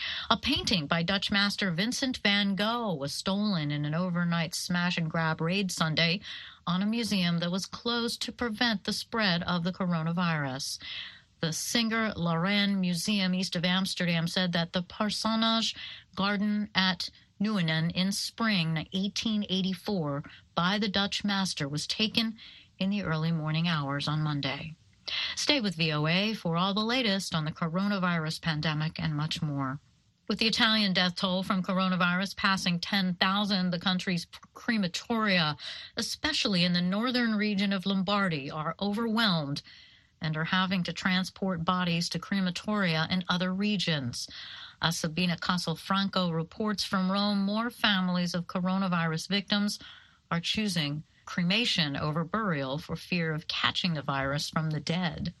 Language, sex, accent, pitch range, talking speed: English, female, American, 165-205 Hz, 140 wpm